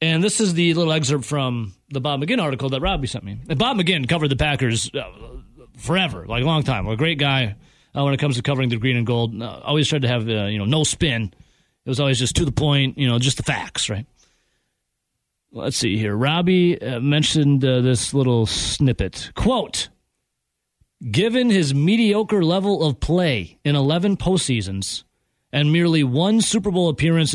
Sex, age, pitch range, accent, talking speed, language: male, 30-49, 120-170 Hz, American, 195 wpm, English